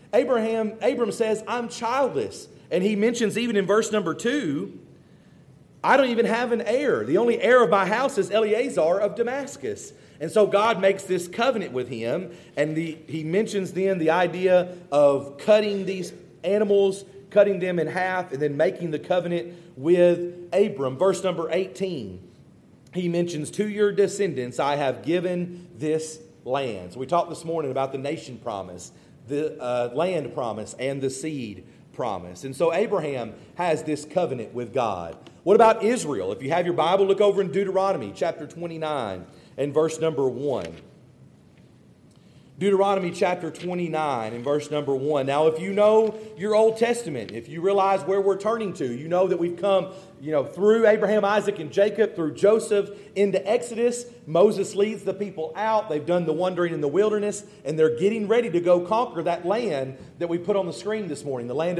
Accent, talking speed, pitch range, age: American, 175 wpm, 160-210 Hz, 40-59